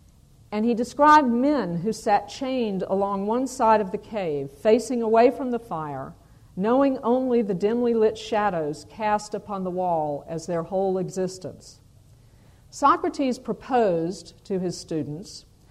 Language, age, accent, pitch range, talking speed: English, 50-69, American, 170-240 Hz, 140 wpm